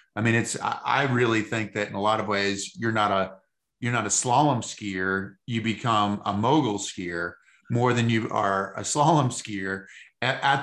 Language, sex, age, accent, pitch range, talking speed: English, male, 30-49, American, 105-135 Hz, 190 wpm